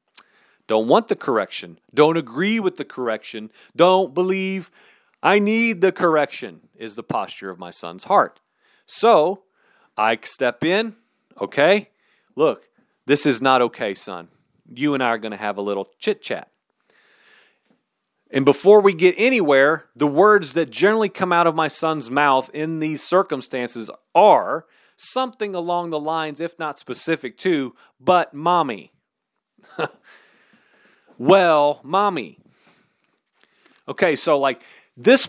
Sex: male